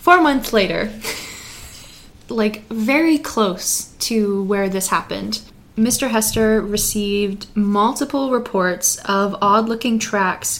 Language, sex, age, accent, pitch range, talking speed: English, female, 20-39, American, 205-245 Hz, 100 wpm